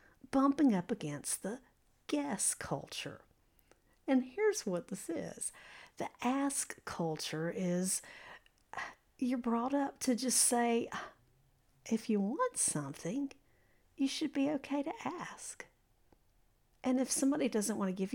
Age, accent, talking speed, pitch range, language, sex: 50-69, American, 125 wpm, 180-260 Hz, English, female